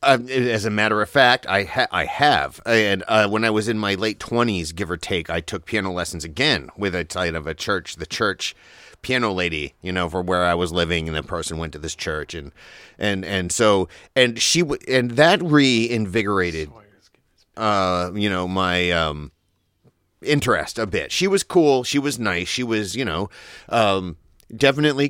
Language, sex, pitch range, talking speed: English, male, 85-120 Hz, 195 wpm